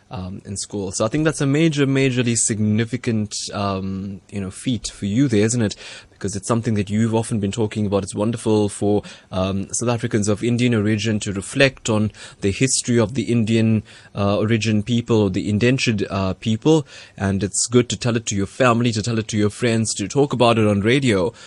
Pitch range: 105-120 Hz